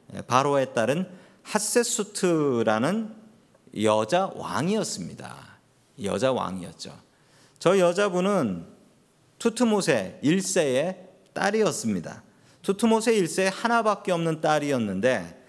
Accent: native